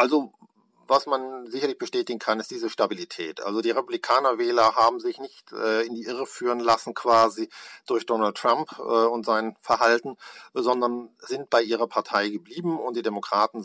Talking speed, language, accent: 165 wpm, German, German